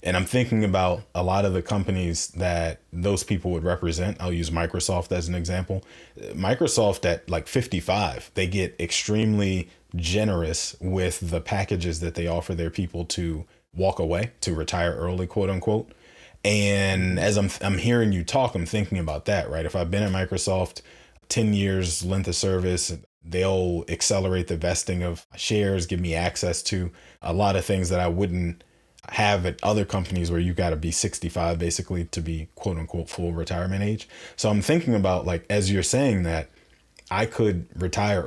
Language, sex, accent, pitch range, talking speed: English, male, American, 85-100 Hz, 175 wpm